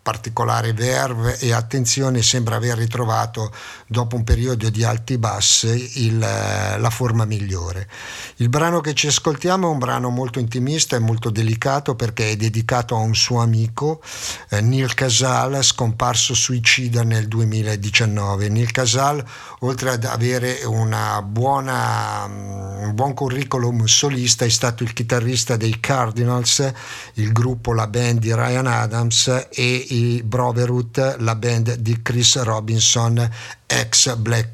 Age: 50-69